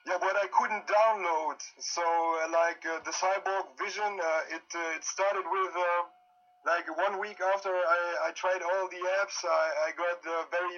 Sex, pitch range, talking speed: male, 165-195 Hz, 185 wpm